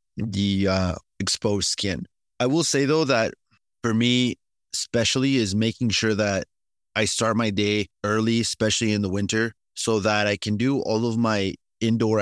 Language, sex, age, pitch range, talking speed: English, male, 30-49, 100-115 Hz, 165 wpm